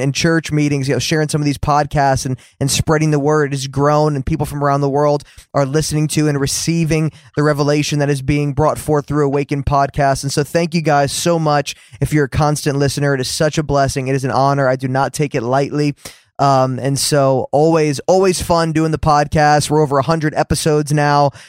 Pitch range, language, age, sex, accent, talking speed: 140-155 Hz, English, 20-39, male, American, 225 wpm